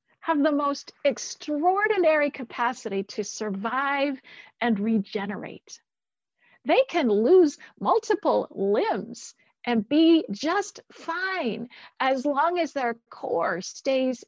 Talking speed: 100 wpm